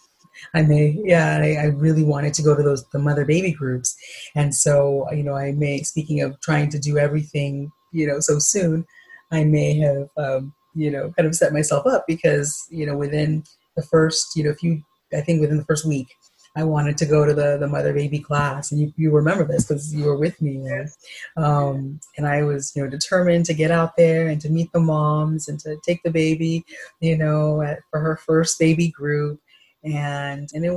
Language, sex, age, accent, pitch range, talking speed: English, female, 30-49, American, 145-155 Hz, 210 wpm